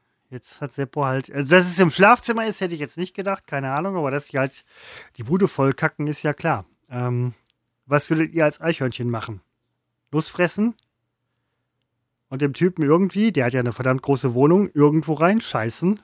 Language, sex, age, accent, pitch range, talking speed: German, male, 30-49, German, 130-170 Hz, 185 wpm